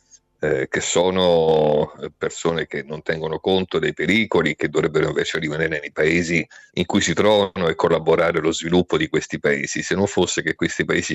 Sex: male